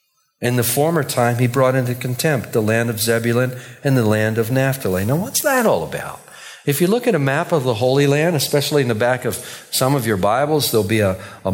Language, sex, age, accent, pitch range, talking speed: English, male, 50-69, American, 110-150 Hz, 235 wpm